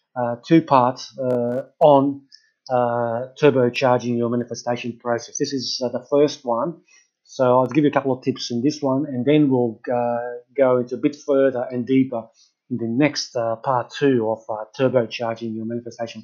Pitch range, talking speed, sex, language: 120-145 Hz, 175 wpm, male, English